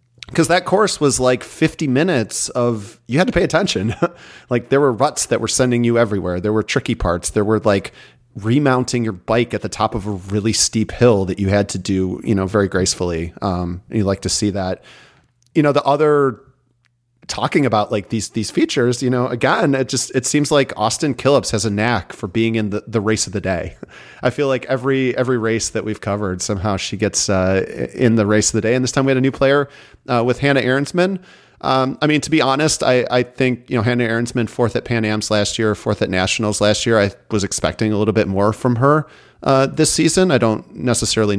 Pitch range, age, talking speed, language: 105-130 Hz, 30-49, 230 wpm, English